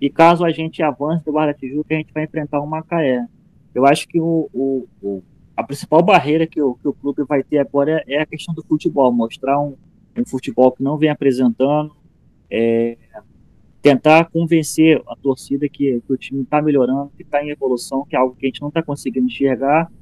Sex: male